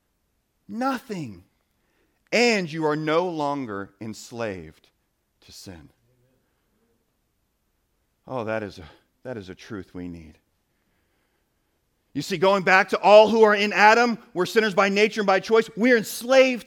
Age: 40-59